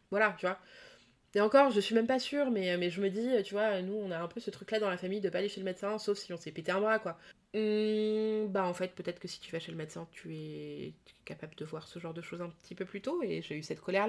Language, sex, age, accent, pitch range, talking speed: French, female, 20-39, French, 175-210 Hz, 310 wpm